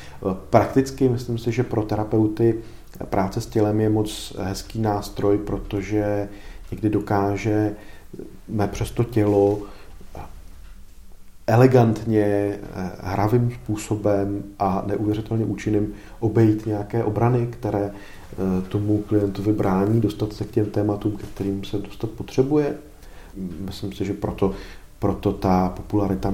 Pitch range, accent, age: 95-110 Hz, native, 40-59